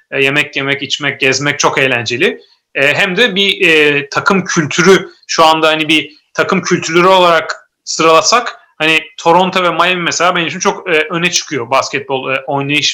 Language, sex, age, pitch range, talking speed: Turkish, male, 30-49, 135-175 Hz, 145 wpm